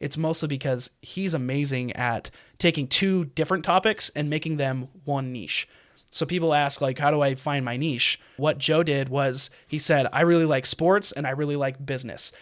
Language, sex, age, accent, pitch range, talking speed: English, male, 20-39, American, 135-160 Hz, 195 wpm